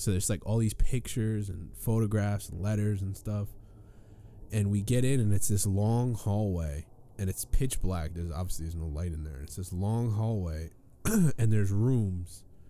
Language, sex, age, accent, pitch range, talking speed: English, male, 20-39, American, 90-110 Hz, 190 wpm